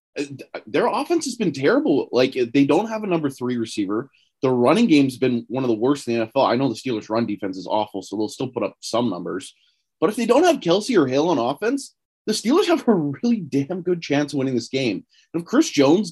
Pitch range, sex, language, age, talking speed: 125-200 Hz, male, English, 20-39, 245 wpm